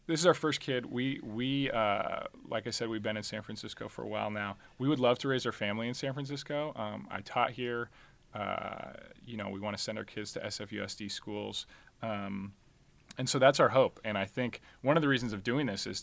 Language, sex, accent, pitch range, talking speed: English, male, American, 105-120 Hz, 235 wpm